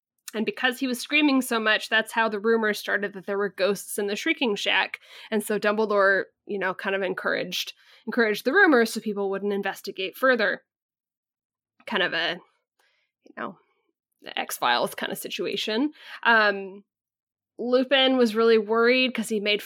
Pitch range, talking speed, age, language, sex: 205-245 Hz, 165 wpm, 10-29, English, female